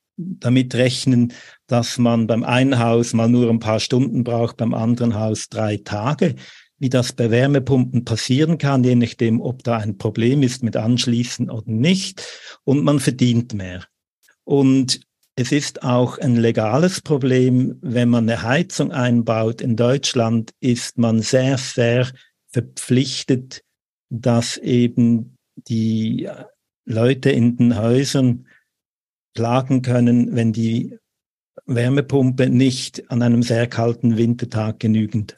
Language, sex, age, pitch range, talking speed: German, male, 50-69, 115-135 Hz, 130 wpm